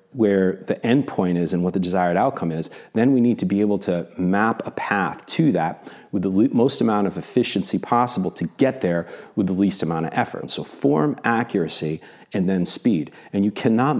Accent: American